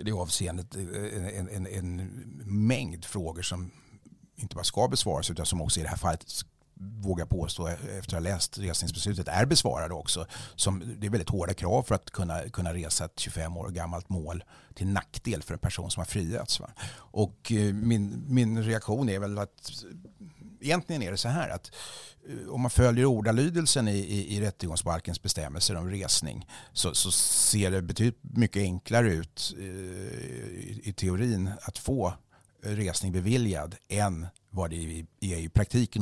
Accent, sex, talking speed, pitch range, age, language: Swedish, male, 160 wpm, 90-110 Hz, 60-79, English